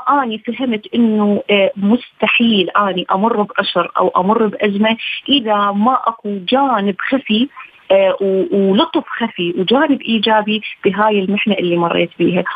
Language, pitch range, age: Arabic, 195-260 Hz, 30-49